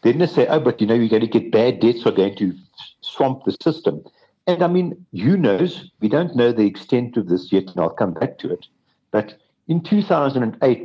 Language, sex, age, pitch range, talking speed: English, male, 60-79, 100-135 Hz, 240 wpm